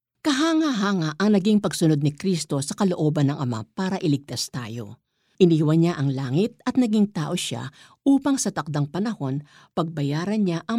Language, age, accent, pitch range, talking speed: Filipino, 50-69, native, 140-200 Hz, 155 wpm